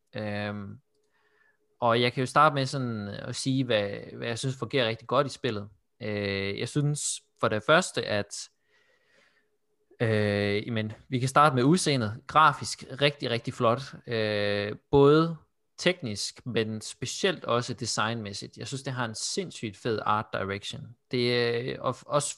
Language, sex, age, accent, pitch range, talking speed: Danish, male, 20-39, native, 110-145 Hz, 160 wpm